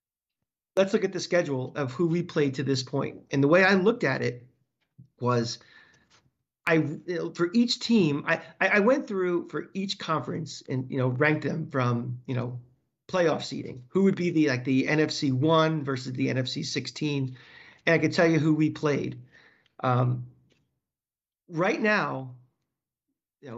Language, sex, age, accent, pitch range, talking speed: English, male, 40-59, American, 130-175 Hz, 170 wpm